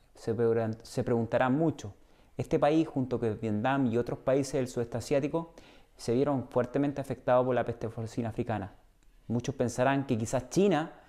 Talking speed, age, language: 150 wpm, 30-49, Spanish